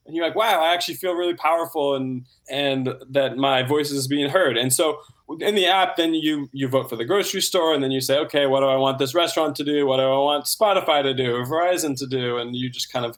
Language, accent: English, American